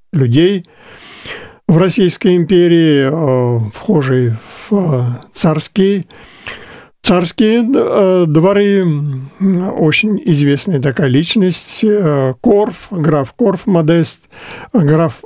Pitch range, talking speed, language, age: 135-185 Hz, 70 wpm, Russian, 50-69